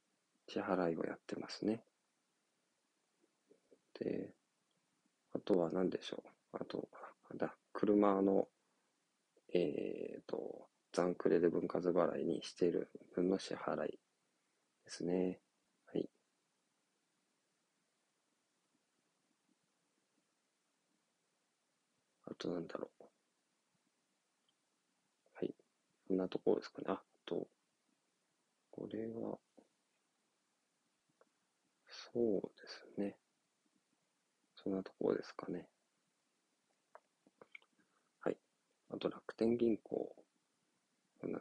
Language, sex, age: Japanese, male, 40-59